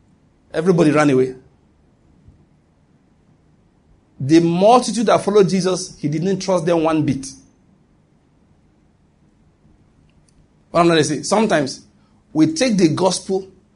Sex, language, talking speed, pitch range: male, English, 95 wpm, 135-185 Hz